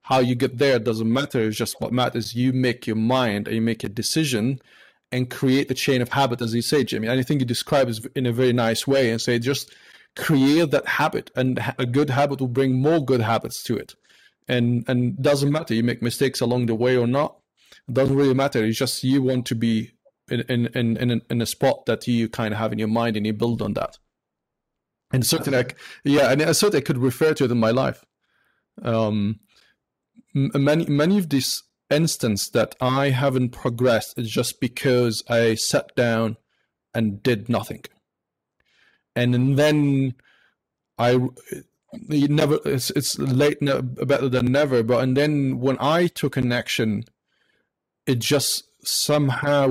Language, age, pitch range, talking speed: English, 30-49, 120-140 Hz, 185 wpm